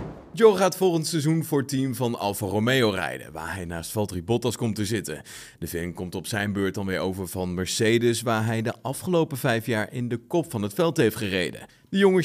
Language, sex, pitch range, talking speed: Dutch, male, 100-145 Hz, 225 wpm